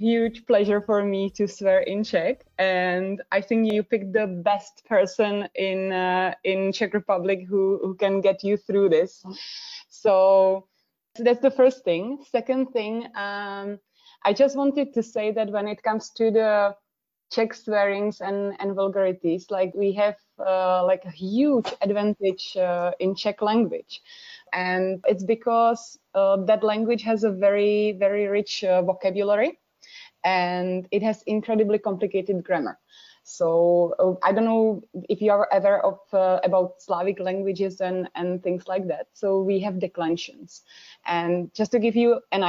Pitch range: 190-220 Hz